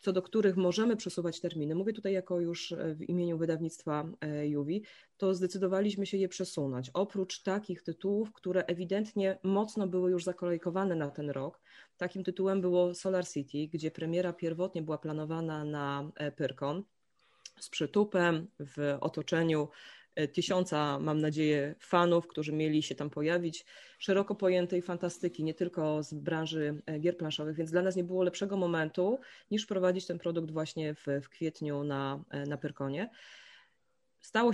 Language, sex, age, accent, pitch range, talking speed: Polish, female, 20-39, native, 150-185 Hz, 145 wpm